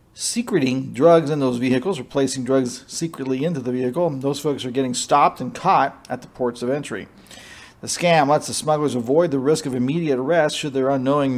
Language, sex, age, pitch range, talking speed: English, male, 40-59, 130-155 Hz, 195 wpm